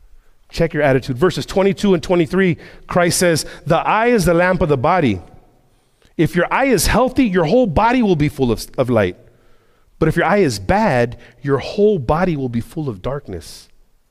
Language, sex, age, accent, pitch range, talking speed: English, male, 40-59, American, 115-175 Hz, 190 wpm